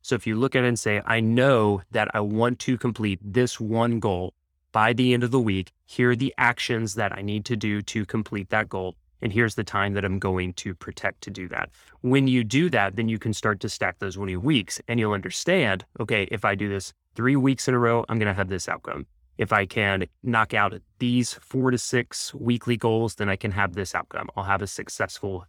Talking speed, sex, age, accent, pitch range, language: 240 wpm, male, 30-49, American, 95-120 Hz, English